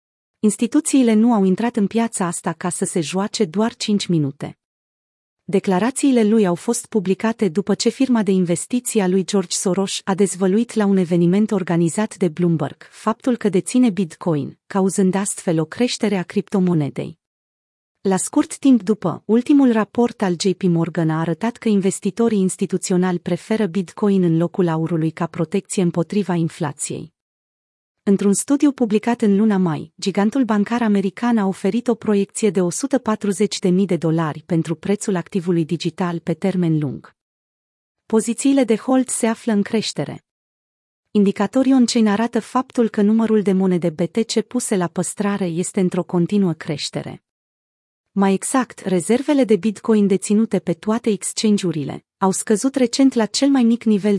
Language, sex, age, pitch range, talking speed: Romanian, female, 30-49, 175-220 Hz, 145 wpm